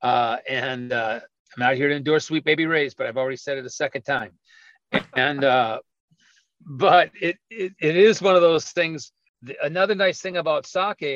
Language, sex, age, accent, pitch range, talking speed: English, male, 50-69, American, 135-170 Hz, 190 wpm